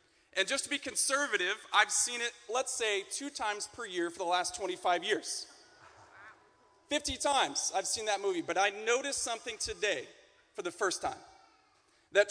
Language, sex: English, male